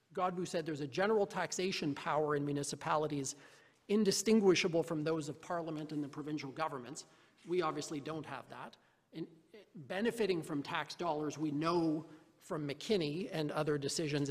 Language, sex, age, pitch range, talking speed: English, male, 40-59, 150-190 Hz, 145 wpm